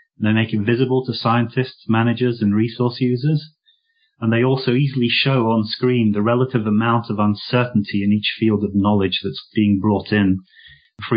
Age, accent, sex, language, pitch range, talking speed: 30-49, British, male, English, 105-125 Hz, 170 wpm